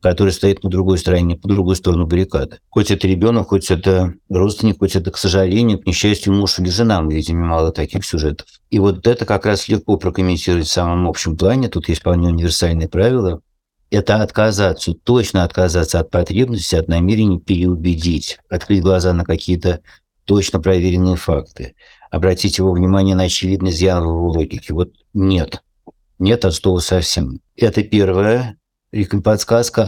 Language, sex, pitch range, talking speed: Russian, male, 90-100 Hz, 155 wpm